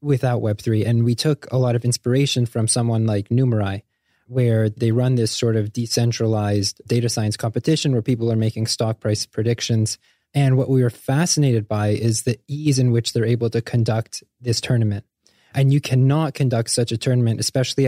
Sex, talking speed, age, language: male, 185 wpm, 20-39, English